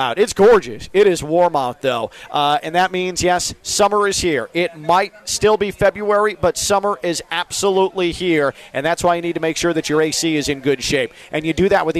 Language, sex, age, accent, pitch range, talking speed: English, male, 40-59, American, 155-195 Hz, 230 wpm